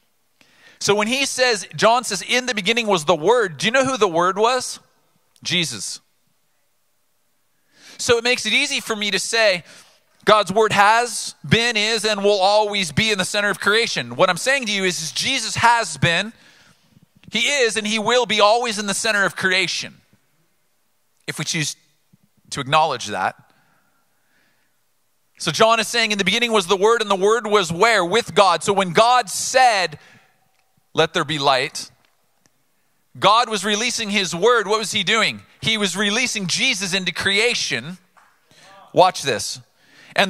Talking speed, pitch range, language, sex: 170 wpm, 180-230 Hz, English, male